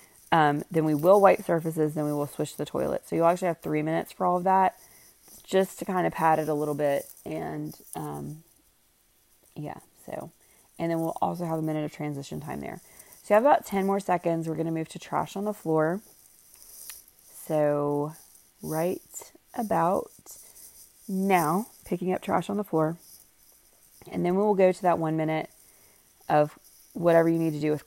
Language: English